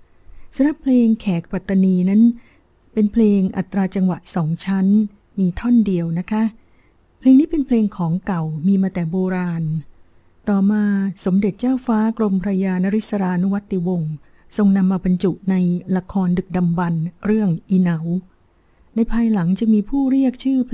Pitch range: 180-210 Hz